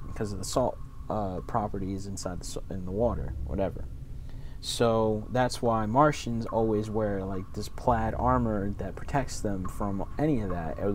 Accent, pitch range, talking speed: American, 100-115 Hz, 160 wpm